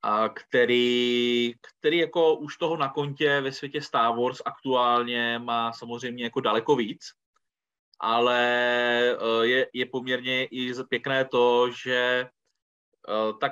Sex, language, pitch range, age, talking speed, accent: male, Czech, 110-125 Hz, 20-39, 120 wpm, native